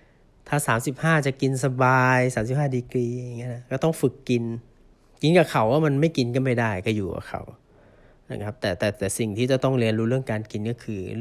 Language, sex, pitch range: Thai, male, 110-130 Hz